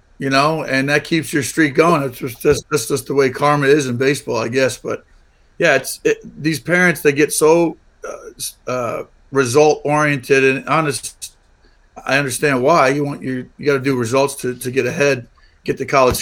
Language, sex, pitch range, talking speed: English, male, 125-150 Hz, 195 wpm